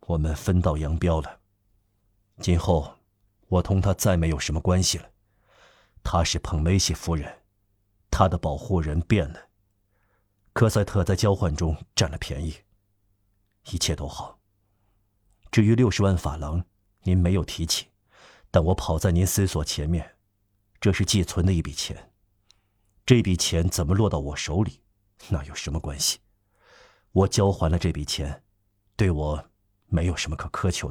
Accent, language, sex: native, Chinese, male